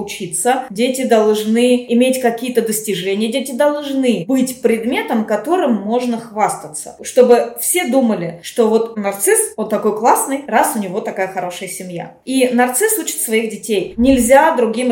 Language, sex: Russian, female